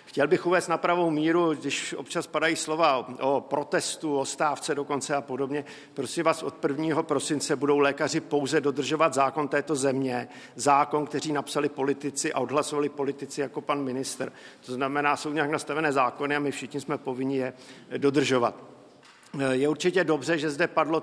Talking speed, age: 165 wpm, 50-69